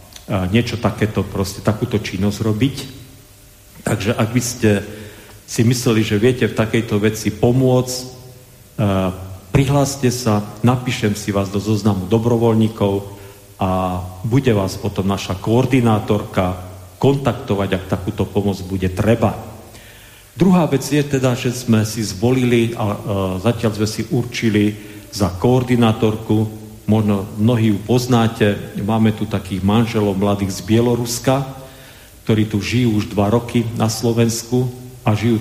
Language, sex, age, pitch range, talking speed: Slovak, male, 40-59, 100-120 Hz, 125 wpm